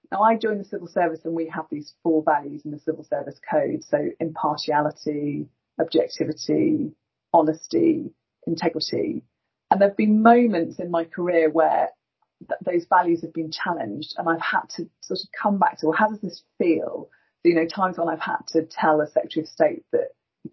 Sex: female